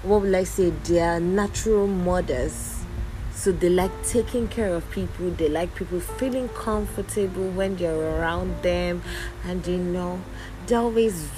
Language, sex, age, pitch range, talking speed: English, female, 30-49, 115-185 Hz, 155 wpm